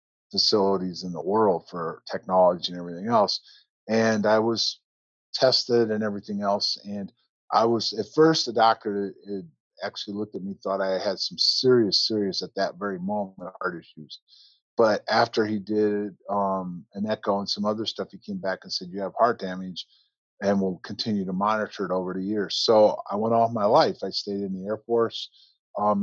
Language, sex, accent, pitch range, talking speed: English, male, American, 100-125 Hz, 190 wpm